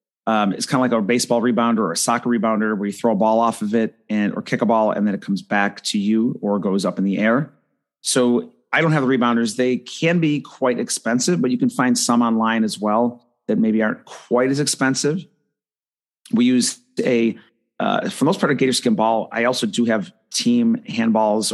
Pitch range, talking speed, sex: 115-145 Hz, 225 wpm, male